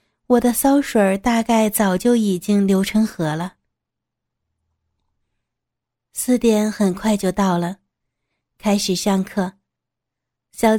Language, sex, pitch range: Chinese, female, 185-225 Hz